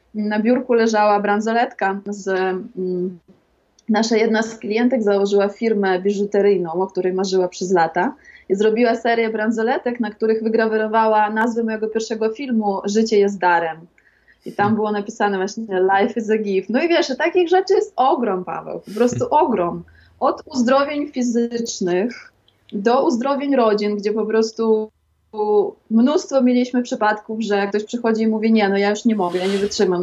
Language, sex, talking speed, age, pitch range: Polish, female, 155 wpm, 20-39, 205-245 Hz